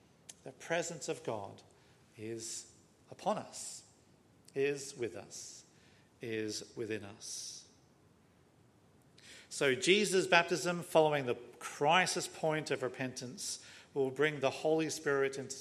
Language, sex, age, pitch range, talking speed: English, male, 50-69, 120-165 Hz, 110 wpm